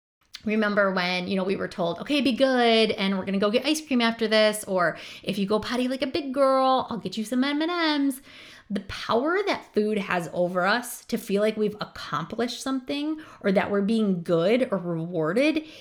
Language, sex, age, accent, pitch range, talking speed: English, female, 20-39, American, 175-235 Hz, 205 wpm